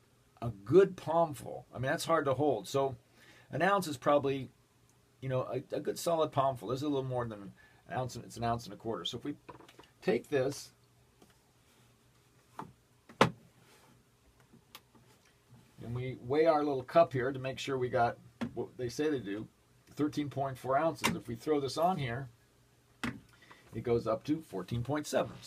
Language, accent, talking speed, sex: English, American, 165 wpm, male